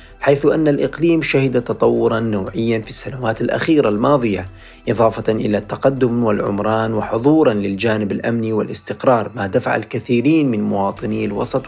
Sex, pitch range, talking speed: male, 105-125 Hz, 125 wpm